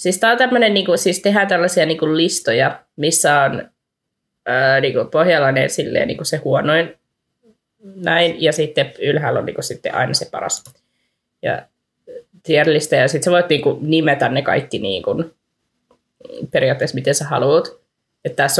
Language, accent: Finnish, native